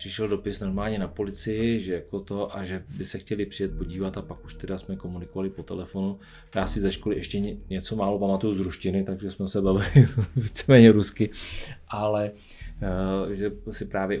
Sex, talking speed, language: male, 190 wpm, Czech